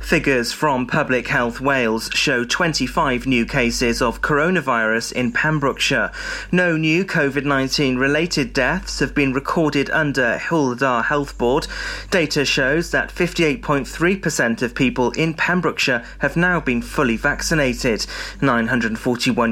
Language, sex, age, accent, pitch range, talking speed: English, male, 30-49, British, 125-165 Hz, 115 wpm